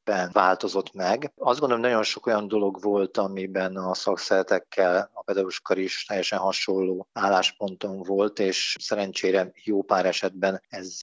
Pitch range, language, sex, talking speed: 95-100 Hz, Hungarian, male, 140 wpm